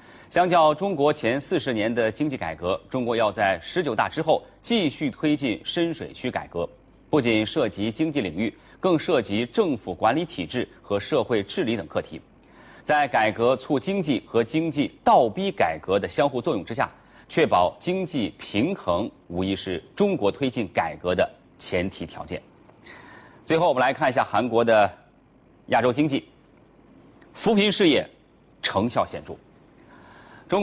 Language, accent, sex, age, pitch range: Chinese, native, male, 30-49, 105-160 Hz